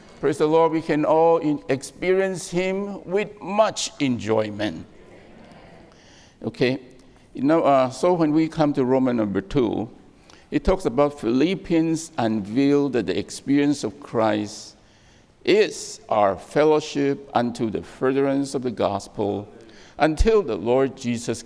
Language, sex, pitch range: English, male, 115-155 Hz